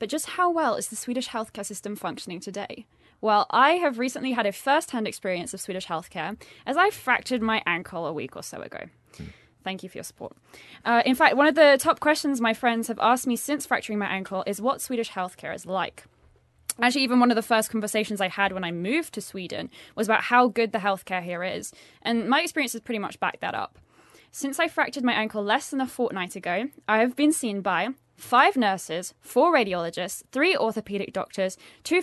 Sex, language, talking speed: female, English, 215 wpm